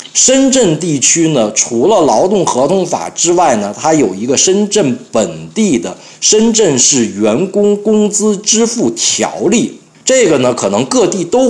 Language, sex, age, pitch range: Chinese, male, 50-69, 140-230 Hz